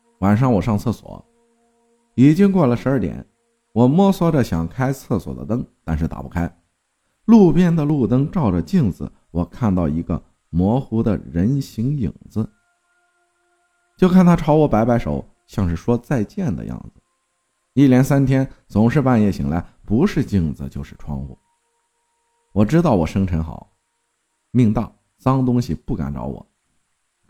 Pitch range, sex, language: 85-140 Hz, male, Chinese